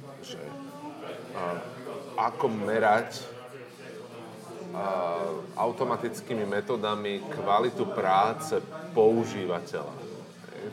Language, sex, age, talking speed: Slovak, male, 30-49, 60 wpm